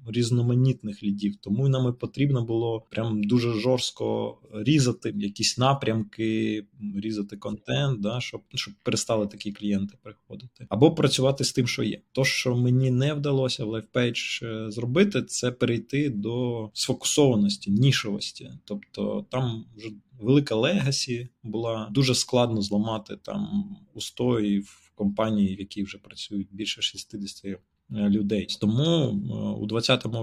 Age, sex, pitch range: 20-39, male, 105-125 Hz